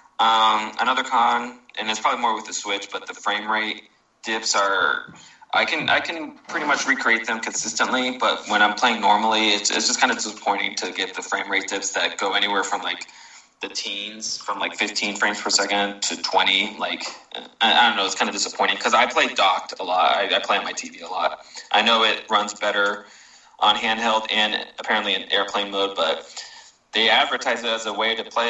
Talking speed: 215 wpm